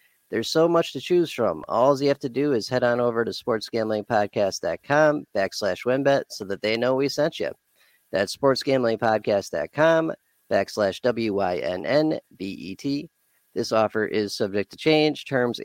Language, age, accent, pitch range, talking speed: English, 40-59, American, 110-145 Hz, 140 wpm